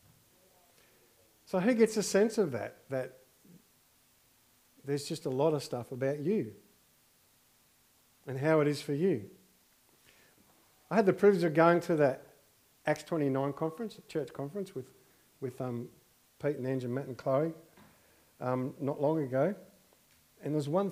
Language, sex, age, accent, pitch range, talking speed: English, male, 50-69, Australian, 135-175 Hz, 155 wpm